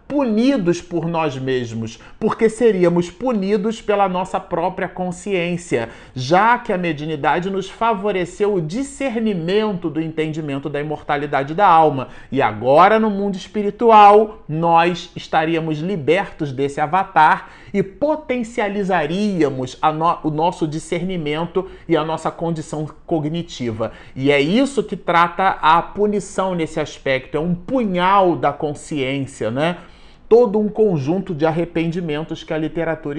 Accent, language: Brazilian, Portuguese